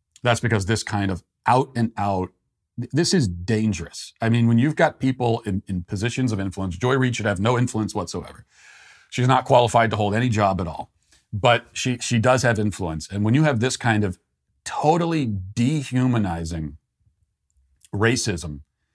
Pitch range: 95-125 Hz